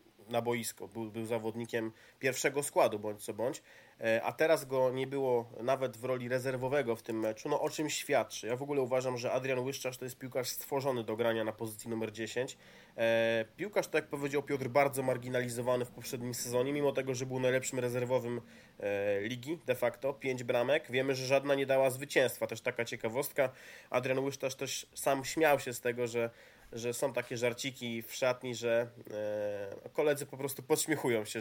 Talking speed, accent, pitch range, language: 180 wpm, native, 120-145 Hz, Polish